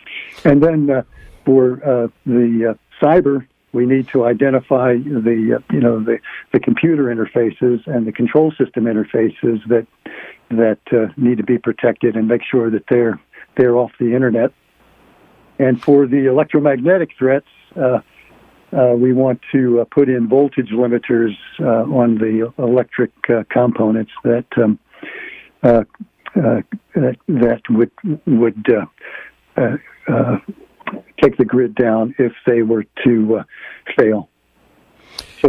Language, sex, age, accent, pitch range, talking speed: English, male, 60-79, American, 115-135 Hz, 140 wpm